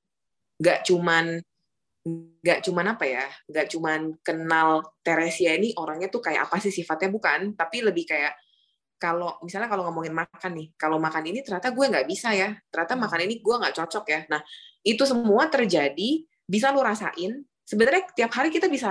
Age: 20-39